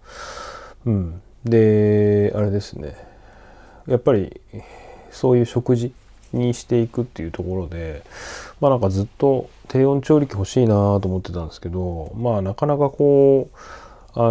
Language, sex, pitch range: Japanese, male, 90-115 Hz